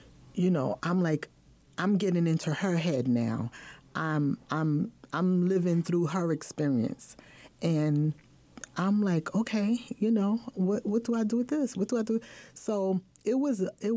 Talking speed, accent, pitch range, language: 165 wpm, American, 160-200 Hz, English